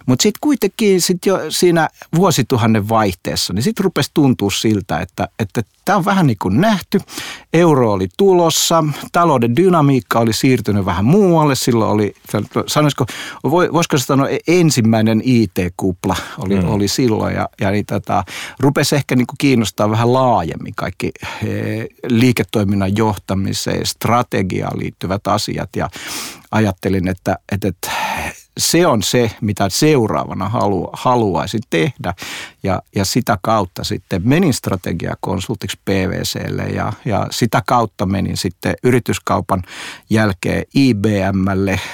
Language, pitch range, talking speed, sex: Finnish, 95-130 Hz, 115 wpm, male